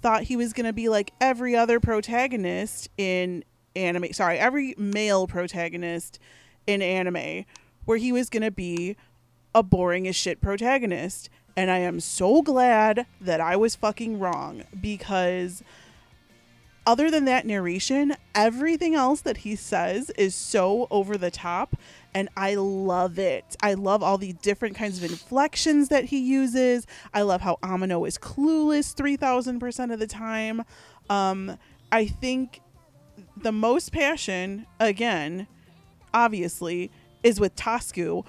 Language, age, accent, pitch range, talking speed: English, 30-49, American, 185-245 Hz, 145 wpm